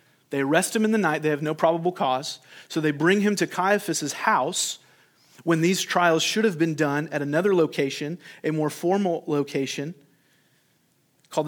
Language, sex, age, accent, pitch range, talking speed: English, male, 30-49, American, 140-170 Hz, 175 wpm